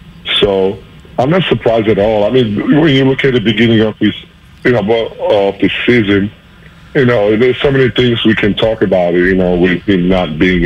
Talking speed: 210 wpm